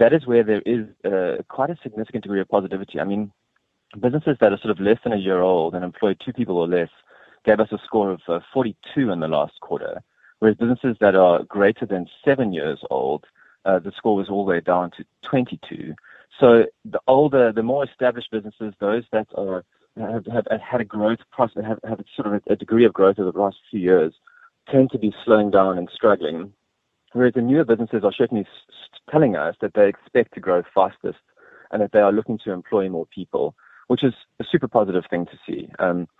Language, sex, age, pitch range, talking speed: English, male, 30-49, 100-125 Hz, 215 wpm